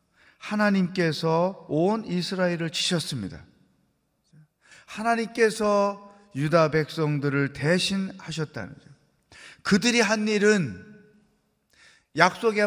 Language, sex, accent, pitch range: Korean, male, native, 150-205 Hz